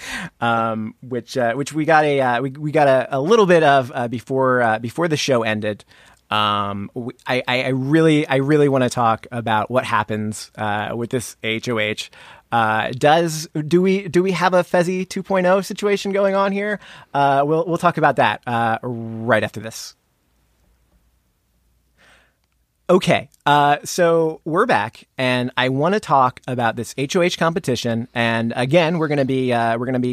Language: English